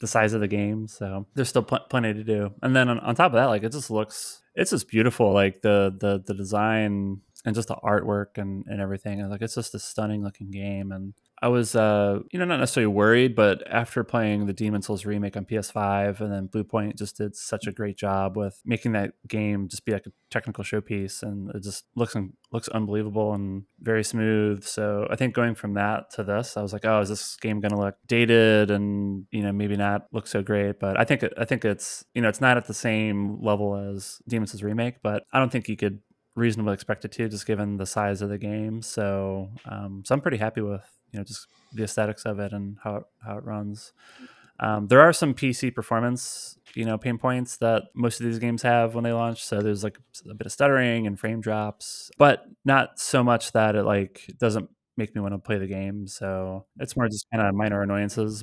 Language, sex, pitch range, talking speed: English, male, 100-115 Hz, 230 wpm